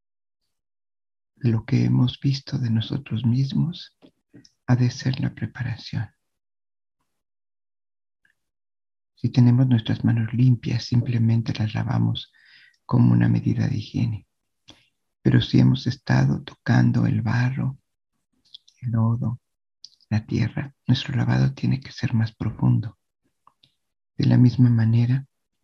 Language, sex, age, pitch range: Spanish, male, 50-69, 100-125 Hz